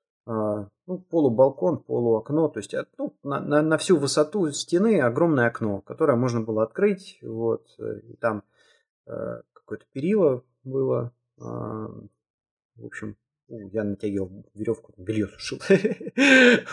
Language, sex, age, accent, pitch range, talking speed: Russian, male, 30-49, native, 110-160 Hz, 125 wpm